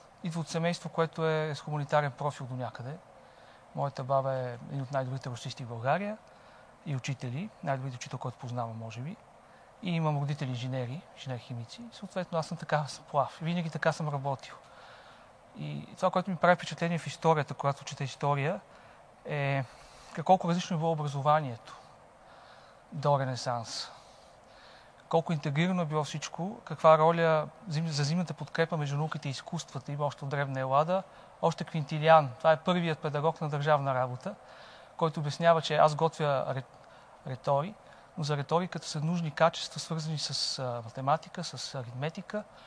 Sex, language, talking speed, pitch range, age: male, Bulgarian, 145 wpm, 135-165 Hz, 40-59